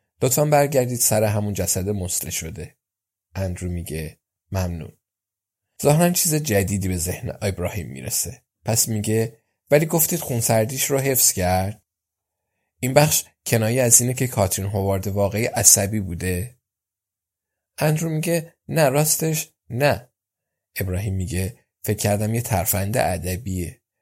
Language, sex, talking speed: Persian, male, 120 wpm